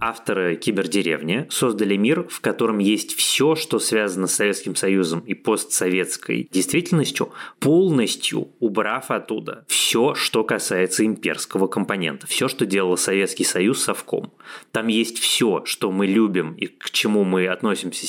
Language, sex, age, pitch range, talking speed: Russian, male, 20-39, 90-115 Hz, 135 wpm